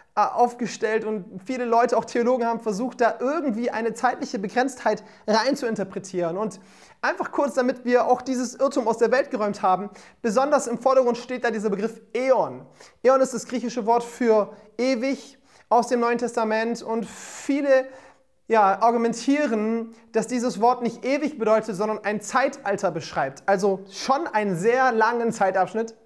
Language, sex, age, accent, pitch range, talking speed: German, male, 30-49, German, 195-245 Hz, 155 wpm